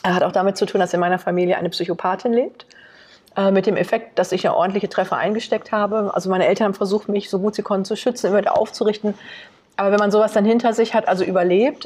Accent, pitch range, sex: German, 185-220 Hz, female